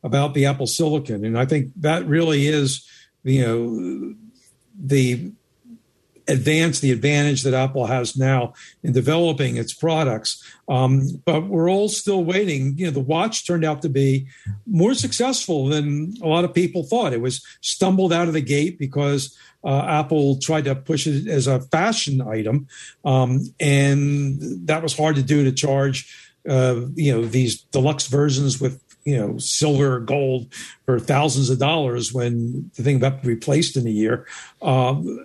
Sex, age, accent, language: male, 50-69, American, English